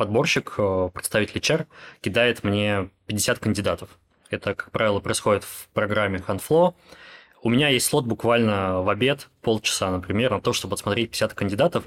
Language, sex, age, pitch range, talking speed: Russian, male, 20-39, 100-120 Hz, 145 wpm